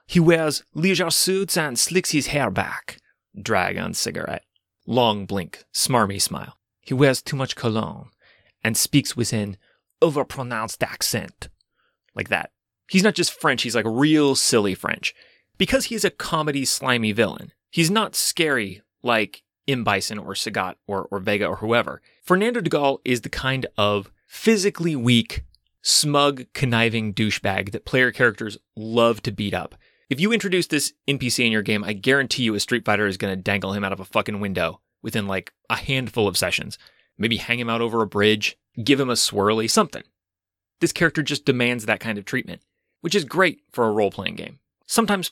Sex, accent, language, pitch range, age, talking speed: male, American, English, 110-155 Hz, 30-49, 175 wpm